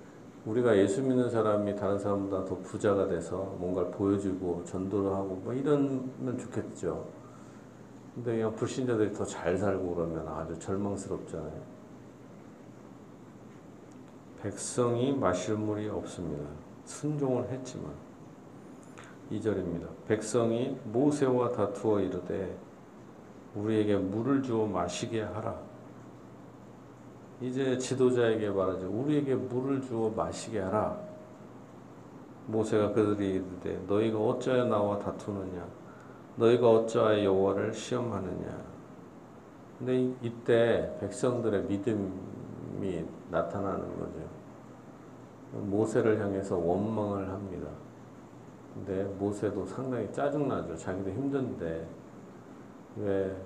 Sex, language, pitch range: male, Korean, 95-120 Hz